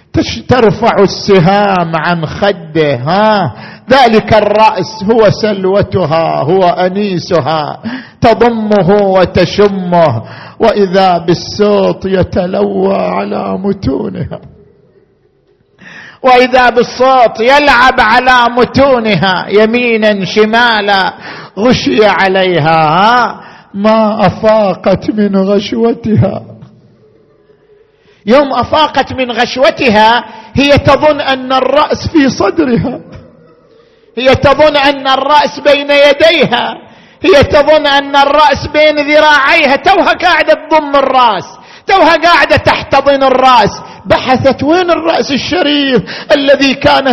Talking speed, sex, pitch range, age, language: 85 wpm, male, 205-285 Hz, 50-69, Arabic